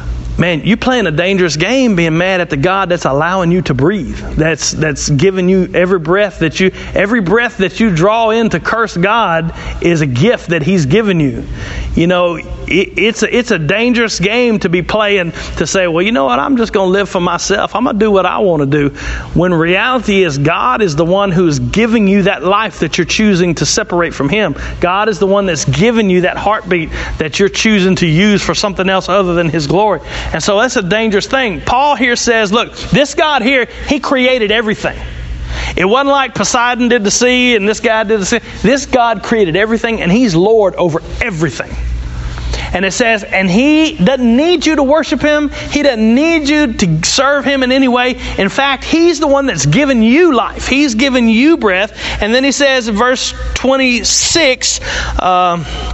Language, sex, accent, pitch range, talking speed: English, male, American, 175-240 Hz, 205 wpm